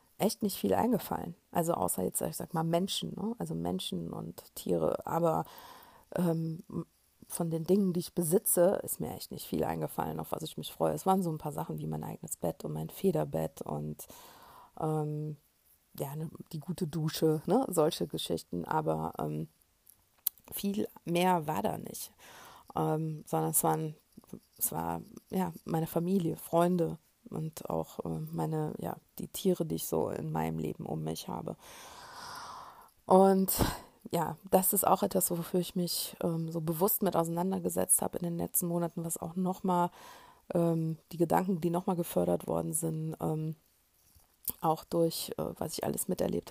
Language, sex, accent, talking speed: German, female, German, 165 wpm